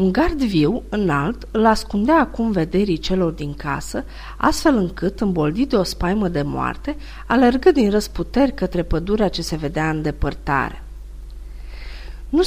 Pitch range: 160-245 Hz